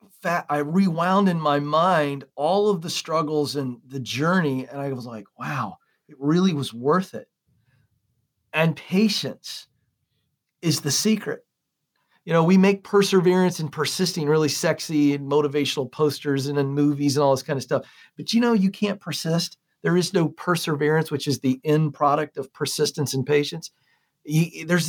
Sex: male